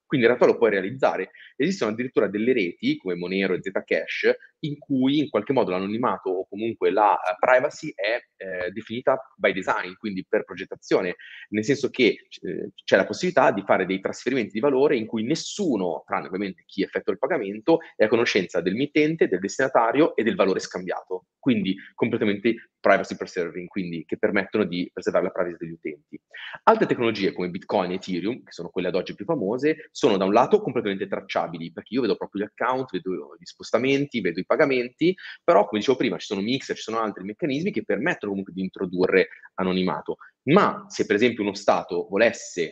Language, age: Italian, 30-49